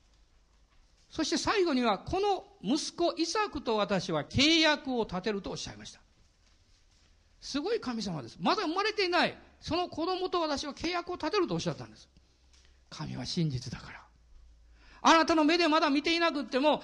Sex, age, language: male, 50-69, Japanese